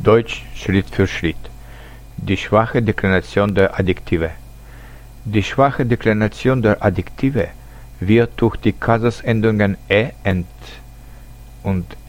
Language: German